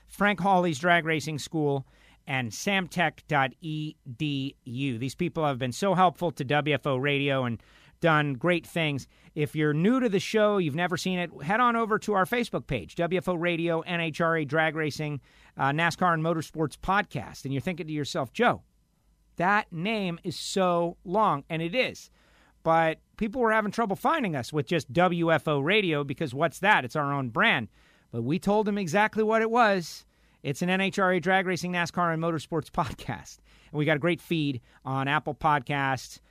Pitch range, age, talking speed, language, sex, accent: 140-190 Hz, 50-69, 175 wpm, English, male, American